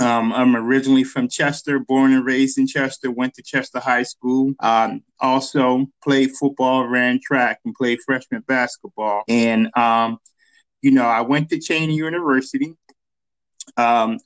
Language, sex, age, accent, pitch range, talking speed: English, male, 20-39, American, 125-145 Hz, 145 wpm